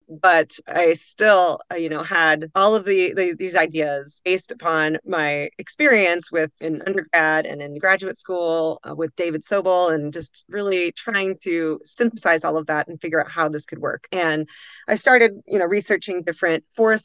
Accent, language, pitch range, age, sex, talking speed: American, English, 155-185 Hz, 30-49, female, 180 wpm